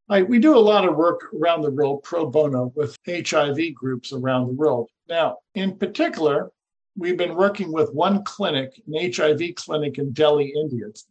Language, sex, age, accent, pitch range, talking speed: English, male, 50-69, American, 145-195 Hz, 180 wpm